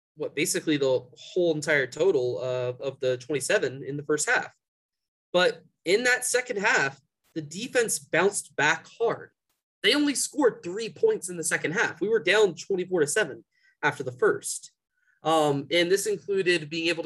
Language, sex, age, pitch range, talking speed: English, male, 20-39, 135-200 Hz, 170 wpm